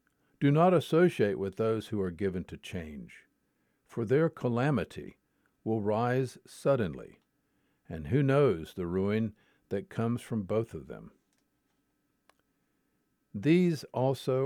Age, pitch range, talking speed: 50-69, 105-140 Hz, 120 wpm